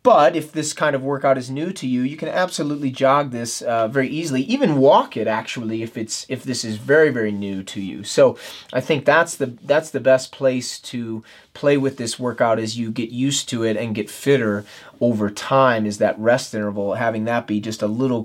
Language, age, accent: English, 30-49, American